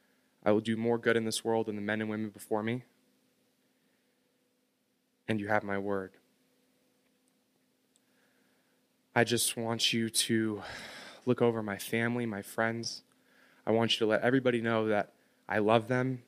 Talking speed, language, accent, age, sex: 155 wpm, English, American, 20-39, male